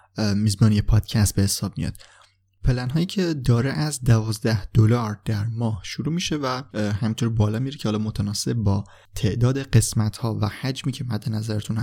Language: Persian